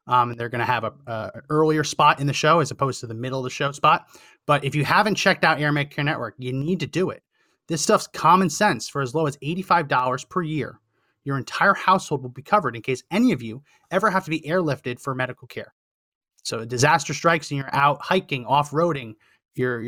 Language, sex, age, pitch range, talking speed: English, male, 30-49, 130-180 Hz, 225 wpm